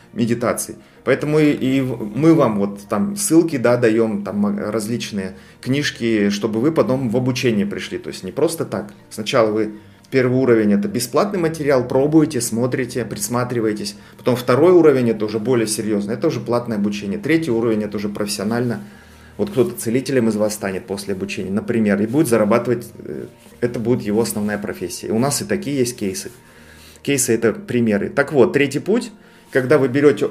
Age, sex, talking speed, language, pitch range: 30-49, male, 175 wpm, Russian, 110-140 Hz